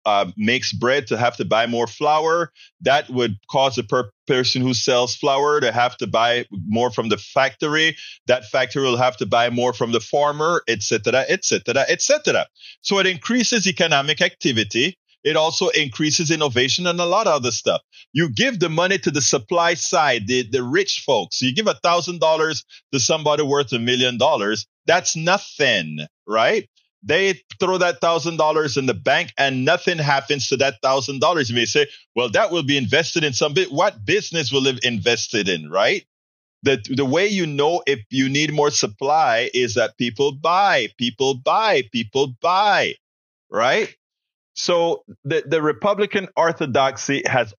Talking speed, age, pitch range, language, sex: 175 wpm, 30-49, 125-170 Hz, English, male